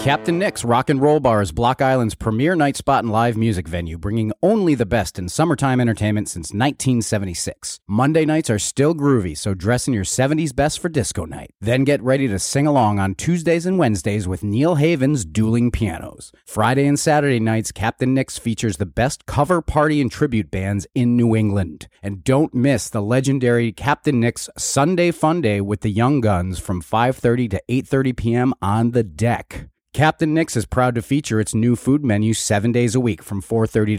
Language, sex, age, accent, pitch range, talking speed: English, male, 30-49, American, 105-140 Hz, 190 wpm